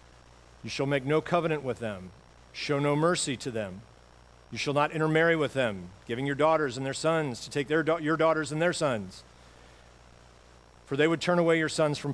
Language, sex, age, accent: English, male, 40-59, American